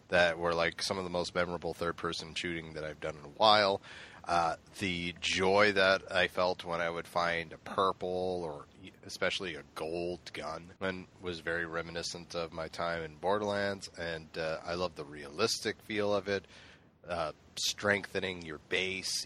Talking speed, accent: 170 wpm, American